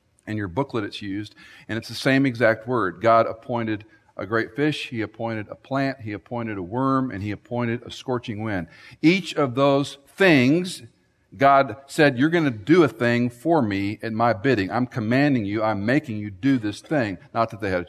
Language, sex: English, male